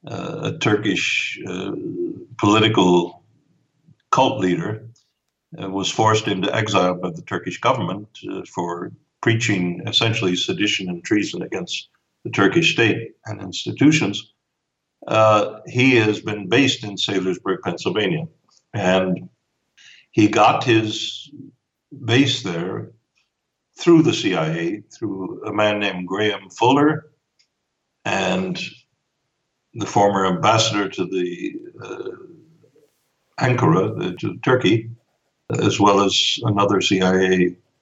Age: 60-79